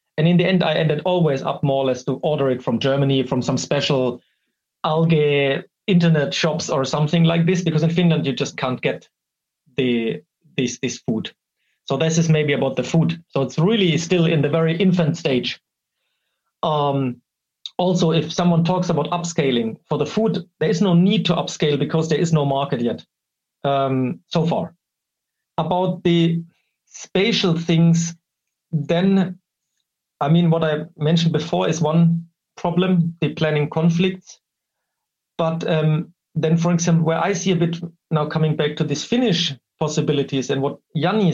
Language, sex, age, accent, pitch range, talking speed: English, male, 40-59, German, 150-175 Hz, 165 wpm